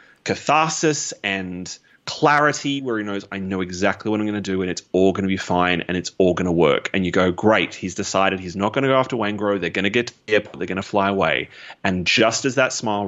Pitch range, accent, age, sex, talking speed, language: 95-125 Hz, Australian, 30-49, male, 260 wpm, English